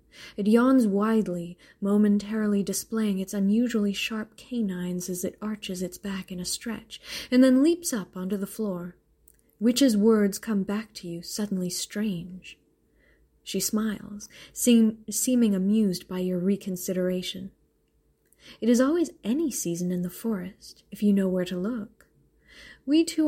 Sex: female